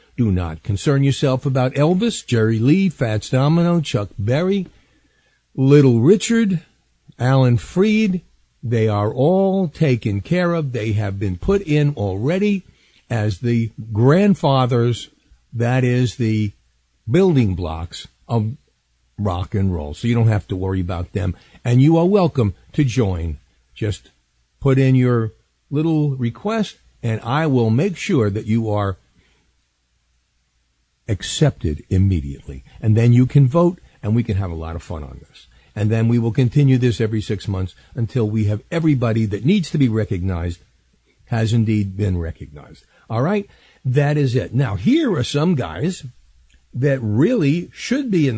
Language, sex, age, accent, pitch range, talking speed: English, male, 50-69, American, 90-140 Hz, 150 wpm